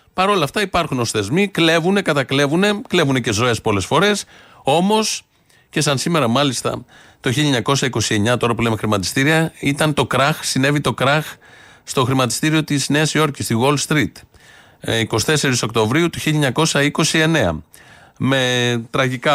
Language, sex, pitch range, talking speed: Greek, male, 115-150 Hz, 135 wpm